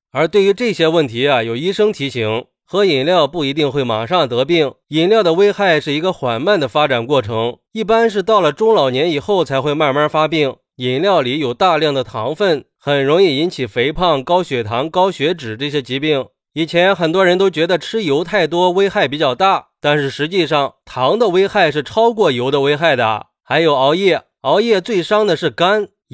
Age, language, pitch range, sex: 20-39, Chinese, 140-190 Hz, male